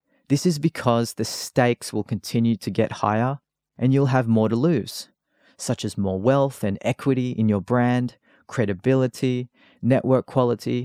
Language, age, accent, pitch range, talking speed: English, 30-49, Australian, 105-130 Hz, 155 wpm